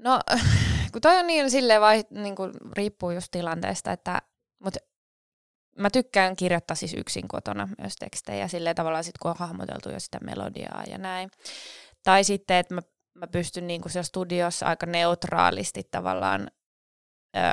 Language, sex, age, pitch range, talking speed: Finnish, female, 20-39, 170-215 Hz, 150 wpm